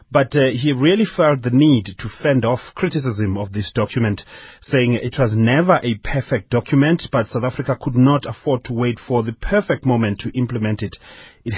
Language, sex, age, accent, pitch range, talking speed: English, male, 30-49, South African, 105-135 Hz, 190 wpm